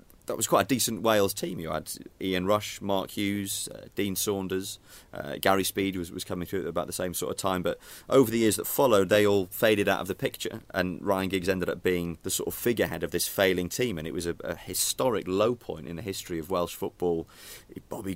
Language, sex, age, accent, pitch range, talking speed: Romanian, male, 30-49, British, 90-105 Hz, 240 wpm